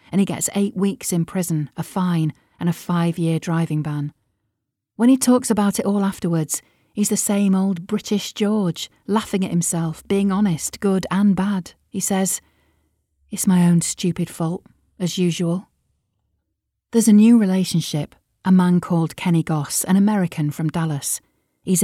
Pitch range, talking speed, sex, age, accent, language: 160-190 Hz, 160 wpm, female, 40-59, British, English